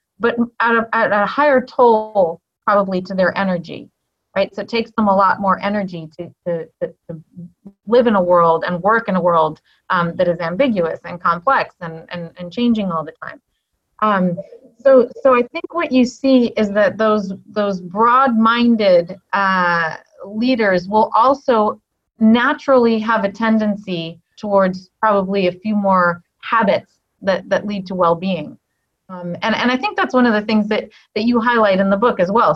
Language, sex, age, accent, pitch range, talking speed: English, female, 30-49, American, 180-230 Hz, 180 wpm